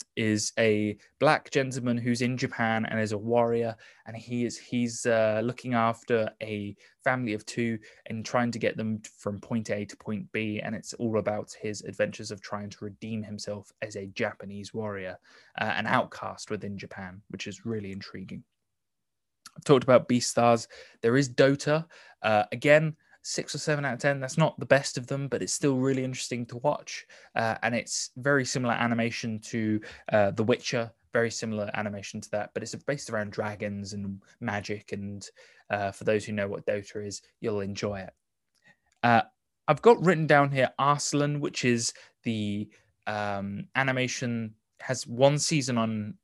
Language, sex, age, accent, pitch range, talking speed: English, male, 20-39, British, 105-125 Hz, 175 wpm